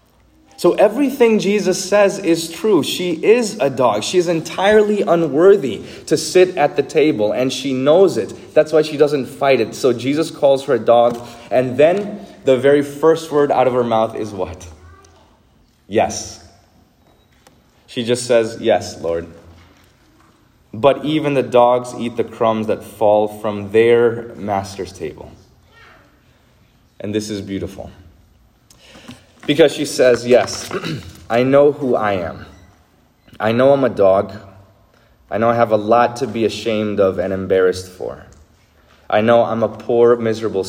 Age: 20-39